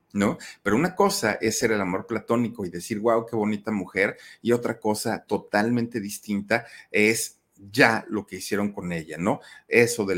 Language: Spanish